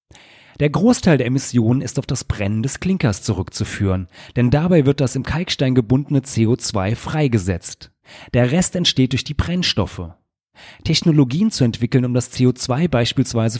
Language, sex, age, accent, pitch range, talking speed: German, male, 30-49, German, 105-150 Hz, 145 wpm